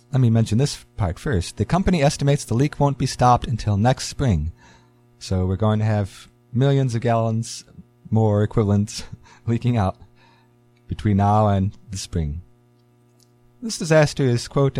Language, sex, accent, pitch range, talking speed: English, male, American, 100-135 Hz, 155 wpm